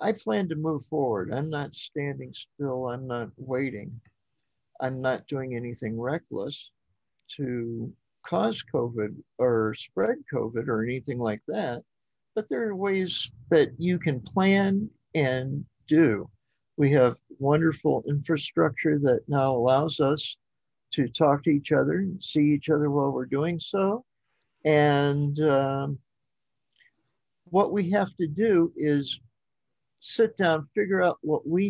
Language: English